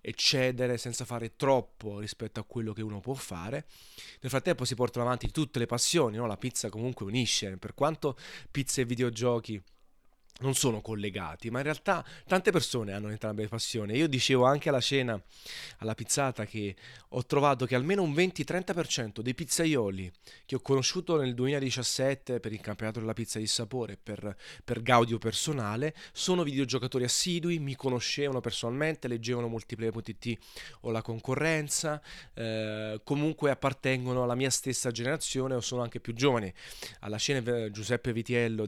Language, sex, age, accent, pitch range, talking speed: Italian, male, 30-49, native, 115-145 Hz, 155 wpm